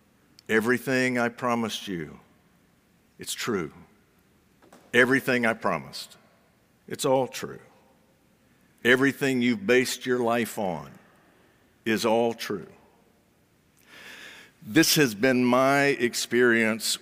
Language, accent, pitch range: English, American, 115-150 Hz